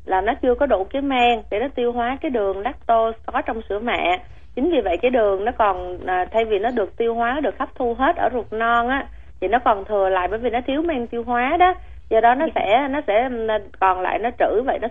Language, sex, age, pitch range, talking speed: Vietnamese, female, 20-39, 205-260 Hz, 260 wpm